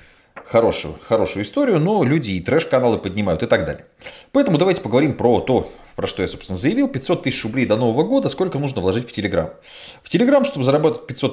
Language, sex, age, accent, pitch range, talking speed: Russian, male, 30-49, native, 95-150 Hz, 200 wpm